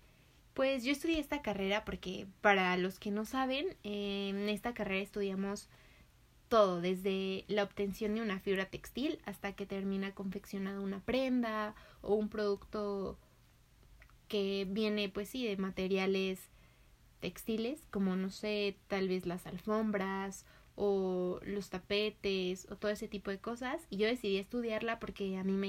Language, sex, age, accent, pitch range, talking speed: Spanish, female, 20-39, Mexican, 195-215 Hz, 150 wpm